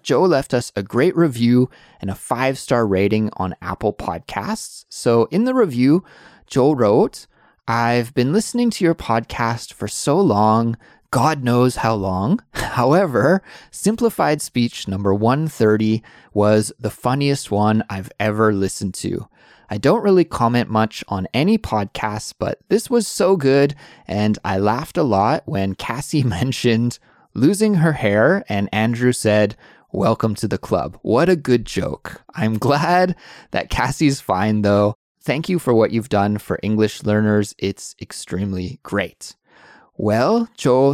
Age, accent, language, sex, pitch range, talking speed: 20-39, American, English, male, 105-140 Hz, 145 wpm